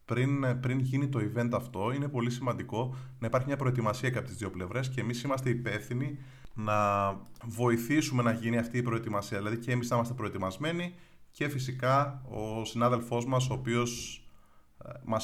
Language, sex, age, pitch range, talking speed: Greek, male, 30-49, 115-130 Hz, 175 wpm